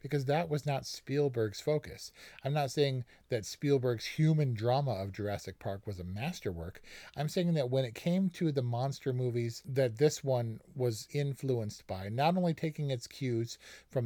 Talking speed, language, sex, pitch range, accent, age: 175 wpm, English, male, 115-150 Hz, American, 40-59